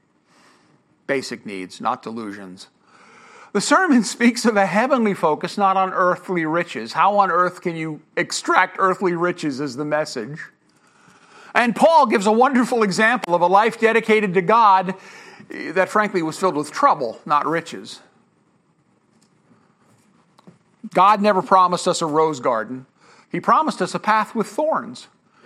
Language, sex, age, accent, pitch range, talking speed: English, male, 50-69, American, 180-230 Hz, 140 wpm